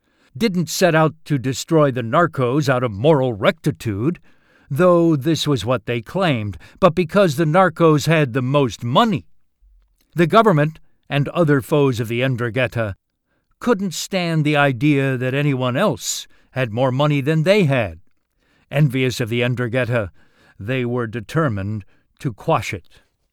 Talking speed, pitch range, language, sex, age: 145 wpm, 115-160 Hz, English, male, 60-79